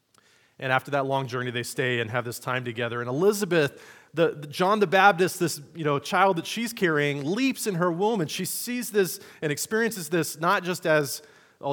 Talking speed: 210 wpm